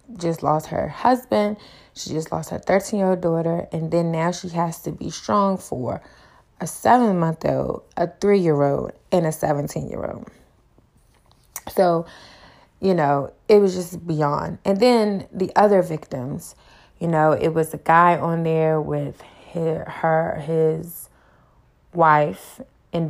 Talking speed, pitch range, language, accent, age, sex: 155 wpm, 160-185 Hz, English, American, 20-39, female